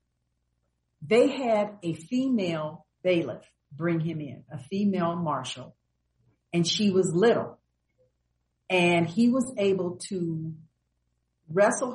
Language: English